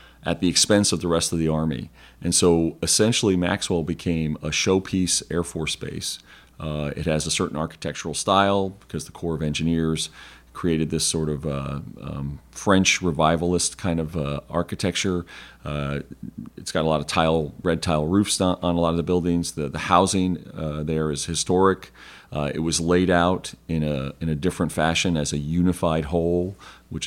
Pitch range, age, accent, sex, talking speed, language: 80-90 Hz, 40-59, American, male, 185 wpm, English